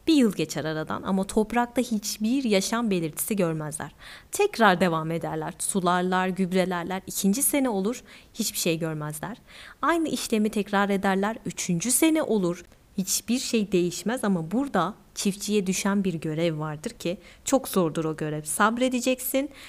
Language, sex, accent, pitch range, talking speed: Turkish, female, native, 180-225 Hz, 135 wpm